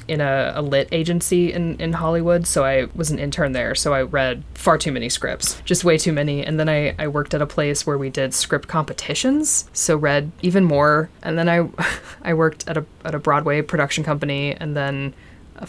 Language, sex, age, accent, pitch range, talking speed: English, female, 20-39, American, 140-170 Hz, 220 wpm